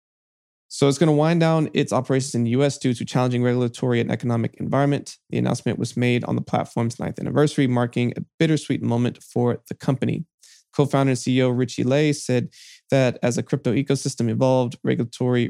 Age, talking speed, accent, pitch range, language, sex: 20-39, 180 wpm, American, 120-140 Hz, English, male